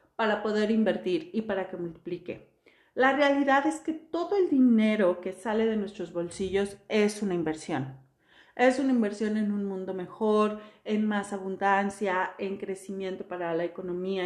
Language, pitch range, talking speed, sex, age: Spanish, 185-230 Hz, 155 wpm, female, 40-59